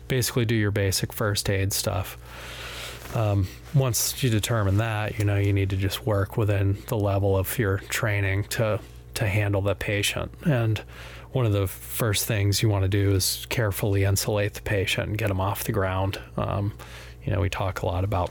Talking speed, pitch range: 195 wpm, 100-115 Hz